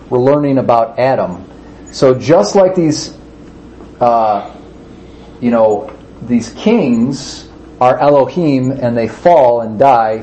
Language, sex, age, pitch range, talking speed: English, male, 40-59, 120-160 Hz, 115 wpm